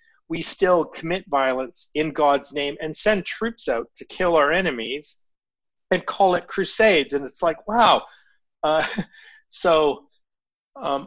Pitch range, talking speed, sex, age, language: 145-230 Hz, 140 wpm, male, 40-59, English